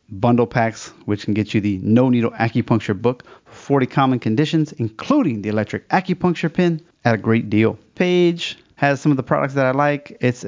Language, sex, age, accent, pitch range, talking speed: English, male, 30-49, American, 115-150 Hz, 190 wpm